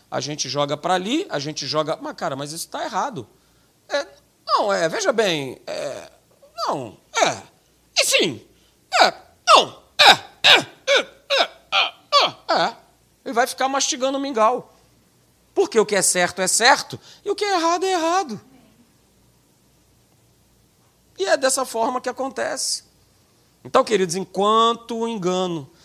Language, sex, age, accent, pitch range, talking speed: Portuguese, male, 40-59, Brazilian, 180-265 Hz, 150 wpm